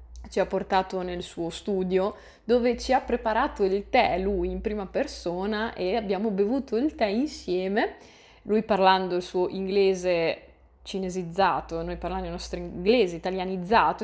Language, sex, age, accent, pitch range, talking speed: Italian, female, 20-39, native, 180-225 Hz, 145 wpm